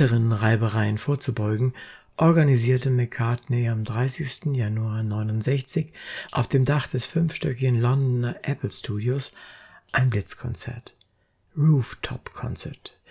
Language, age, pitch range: German, 60-79, 115-145 Hz